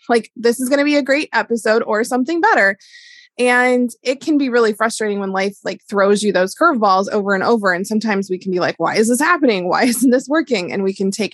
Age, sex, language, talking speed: 20-39, female, English, 245 wpm